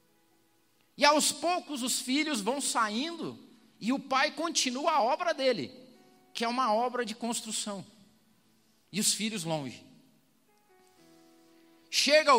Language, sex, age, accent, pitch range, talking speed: Portuguese, male, 40-59, Brazilian, 180-260 Hz, 120 wpm